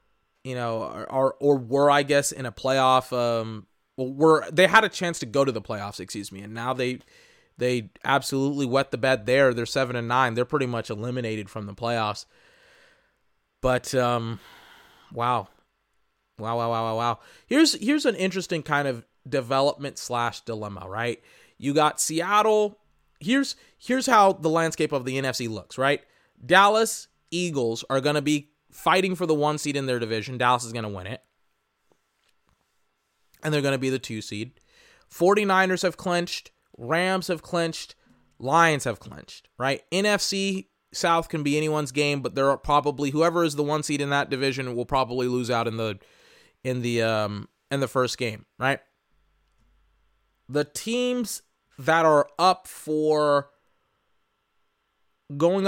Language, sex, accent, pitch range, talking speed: English, male, American, 120-165 Hz, 165 wpm